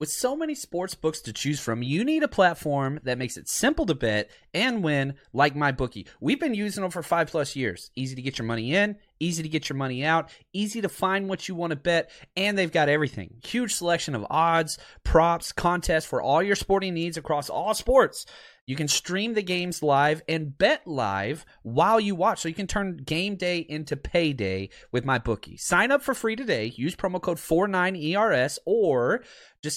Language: English